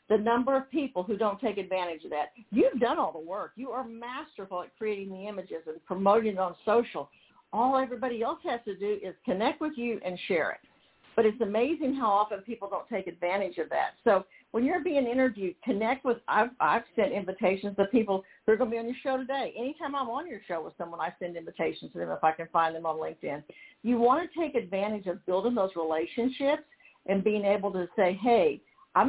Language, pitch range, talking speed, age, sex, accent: English, 185-260 Hz, 225 wpm, 50-69, female, American